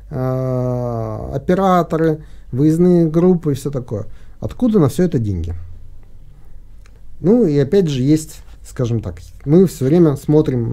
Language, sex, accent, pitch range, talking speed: Russian, male, native, 105-155 Hz, 125 wpm